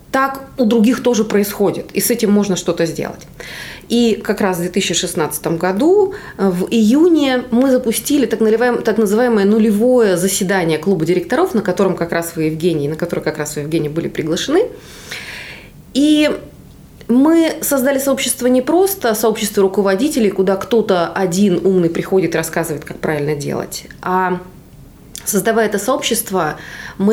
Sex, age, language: female, 20-39, Russian